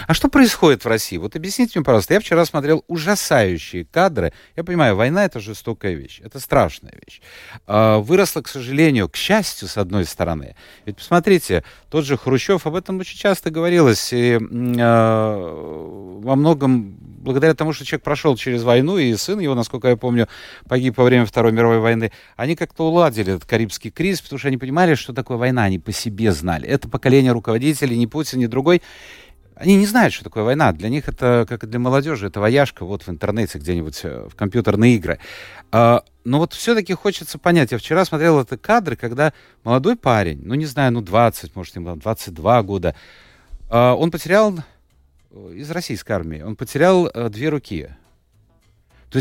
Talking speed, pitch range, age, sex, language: 175 wpm, 105-155 Hz, 30-49, male, Russian